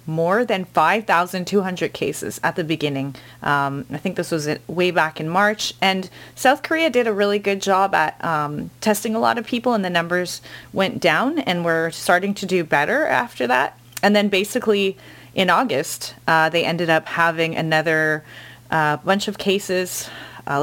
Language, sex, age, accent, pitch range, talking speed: English, female, 30-49, American, 155-195 Hz, 175 wpm